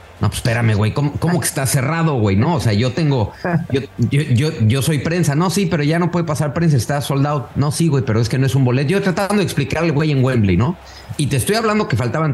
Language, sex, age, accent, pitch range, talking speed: English, male, 30-49, Mexican, 115-165 Hz, 265 wpm